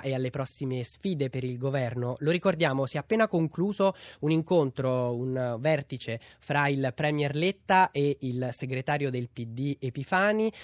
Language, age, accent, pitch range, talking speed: Italian, 20-39, native, 130-165 Hz, 150 wpm